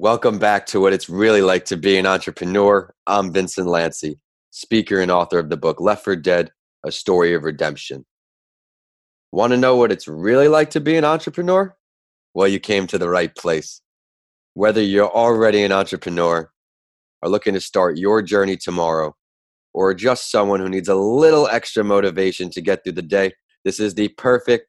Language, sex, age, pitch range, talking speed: English, male, 20-39, 85-105 Hz, 180 wpm